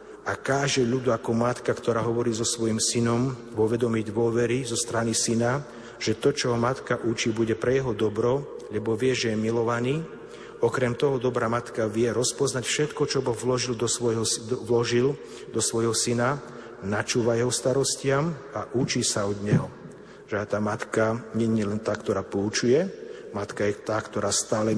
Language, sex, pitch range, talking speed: Slovak, male, 110-125 Hz, 155 wpm